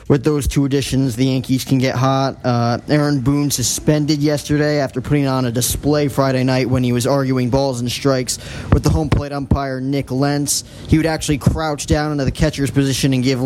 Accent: American